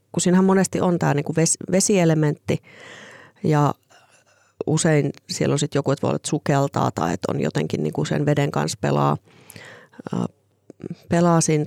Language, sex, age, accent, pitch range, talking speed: Finnish, female, 30-49, native, 145-175 Hz, 155 wpm